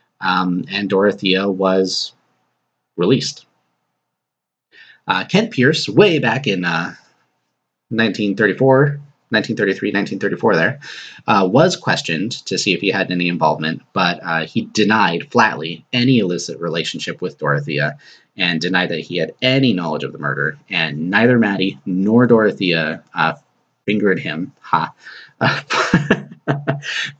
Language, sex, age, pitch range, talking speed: English, male, 30-49, 85-125 Hz, 125 wpm